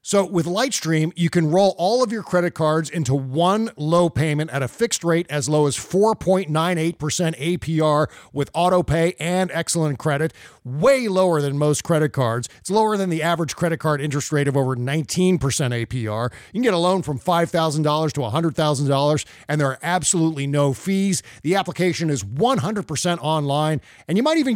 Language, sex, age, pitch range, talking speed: English, male, 40-59, 150-180 Hz, 180 wpm